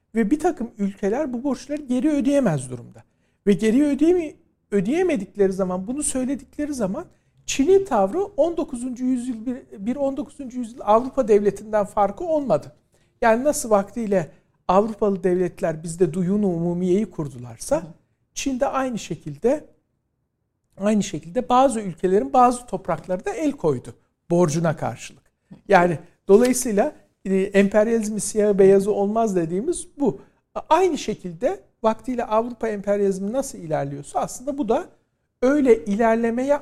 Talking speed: 115 wpm